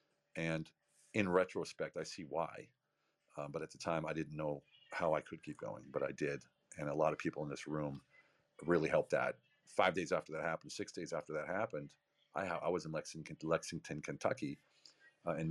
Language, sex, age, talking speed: English, male, 40-59, 200 wpm